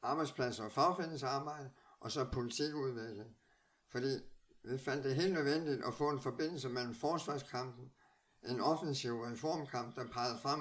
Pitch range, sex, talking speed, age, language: 120-140 Hz, male, 135 wpm, 60-79, Danish